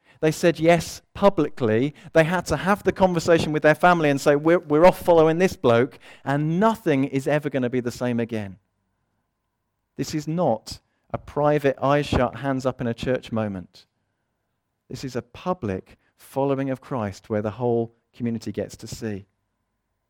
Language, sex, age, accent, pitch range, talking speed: English, male, 40-59, British, 110-155 Hz, 175 wpm